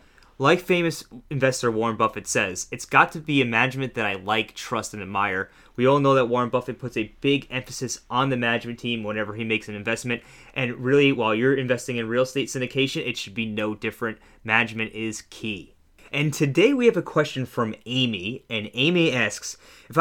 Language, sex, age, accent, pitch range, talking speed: English, male, 20-39, American, 115-135 Hz, 200 wpm